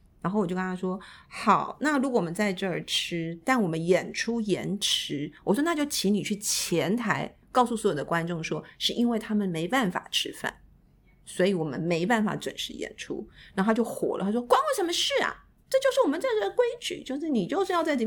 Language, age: Chinese, 50-69